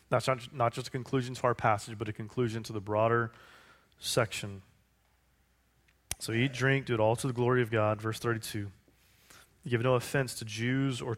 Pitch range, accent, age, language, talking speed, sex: 110-130 Hz, American, 30-49, English, 190 wpm, male